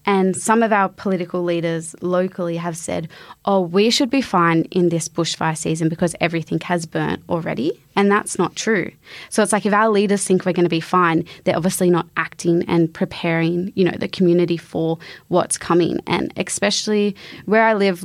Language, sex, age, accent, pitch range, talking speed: English, female, 20-39, Australian, 170-190 Hz, 190 wpm